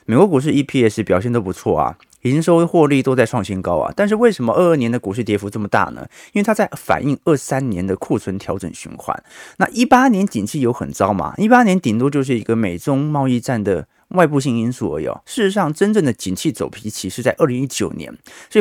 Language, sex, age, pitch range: Chinese, male, 30-49, 110-175 Hz